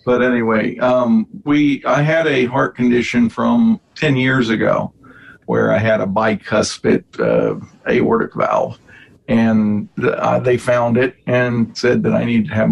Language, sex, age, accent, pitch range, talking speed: English, male, 50-69, American, 115-140 Hz, 160 wpm